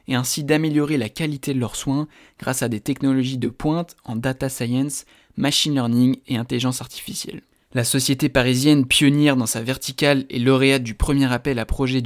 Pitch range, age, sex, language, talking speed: 125-150 Hz, 20-39, male, French, 180 wpm